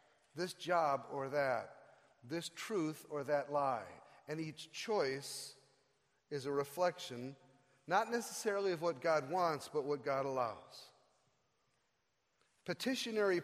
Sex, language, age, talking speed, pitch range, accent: male, English, 40-59, 115 wpm, 150-210 Hz, American